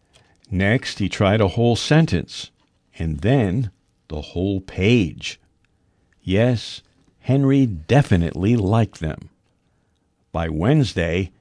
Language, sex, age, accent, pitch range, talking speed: English, male, 60-79, American, 90-130 Hz, 95 wpm